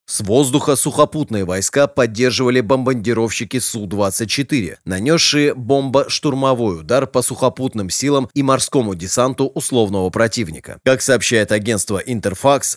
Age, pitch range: 30-49, 115-140 Hz